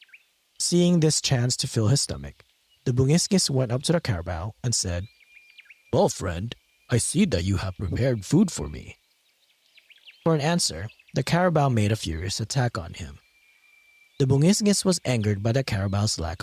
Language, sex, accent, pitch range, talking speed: English, male, American, 95-140 Hz, 170 wpm